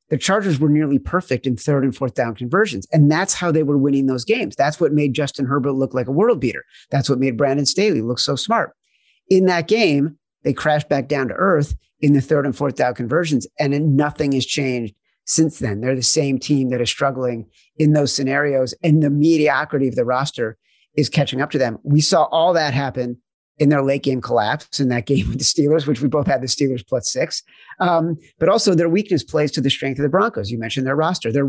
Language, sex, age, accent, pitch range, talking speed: English, male, 40-59, American, 135-155 Hz, 230 wpm